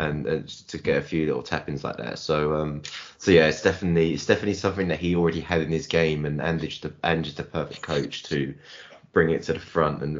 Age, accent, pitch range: 20-39, British, 80-100 Hz